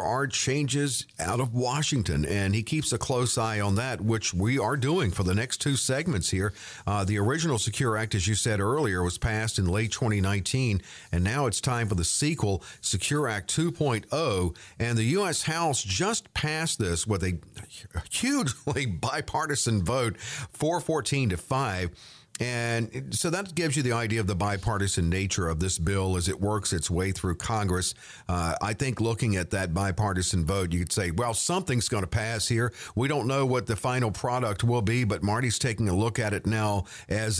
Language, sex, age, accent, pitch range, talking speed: English, male, 50-69, American, 100-130 Hz, 190 wpm